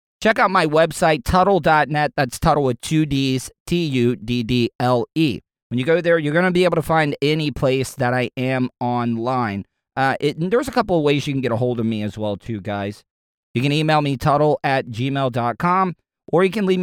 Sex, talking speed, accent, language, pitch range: male, 205 wpm, American, English, 115-155 Hz